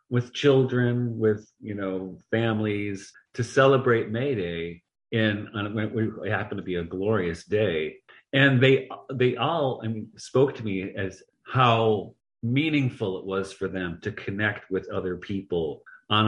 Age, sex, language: 40-59, male, English